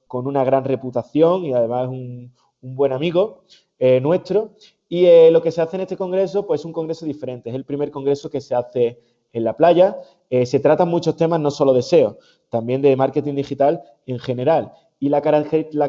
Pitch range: 130-175 Hz